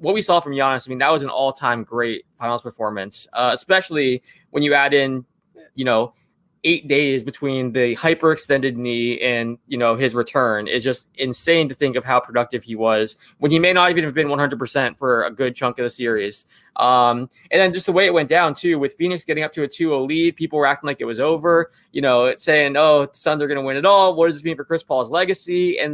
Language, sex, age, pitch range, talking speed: English, male, 20-39, 130-165 Hz, 245 wpm